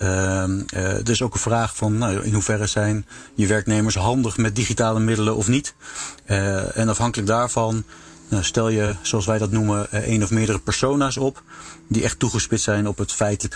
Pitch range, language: 100-110 Hz, English